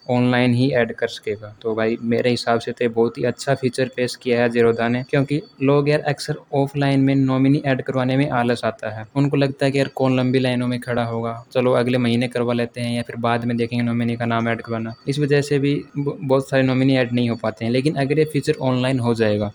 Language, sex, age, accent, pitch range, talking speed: Hindi, male, 20-39, native, 115-130 Hz, 245 wpm